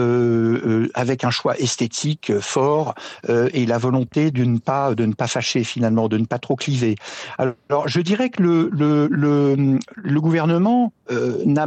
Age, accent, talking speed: 60-79, French, 185 wpm